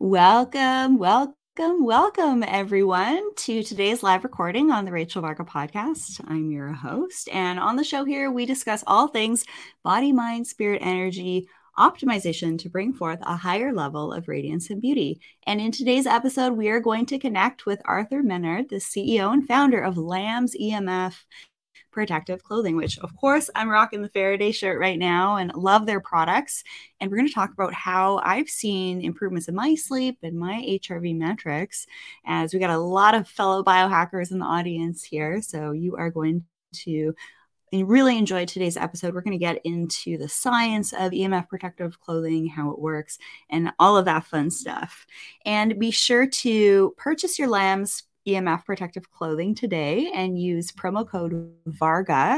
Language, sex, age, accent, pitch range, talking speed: English, female, 20-39, American, 170-240 Hz, 170 wpm